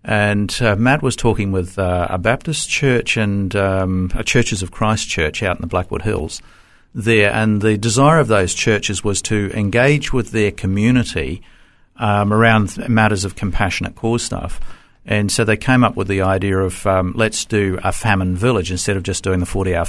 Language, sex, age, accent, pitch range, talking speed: English, male, 50-69, Australian, 90-110 Hz, 190 wpm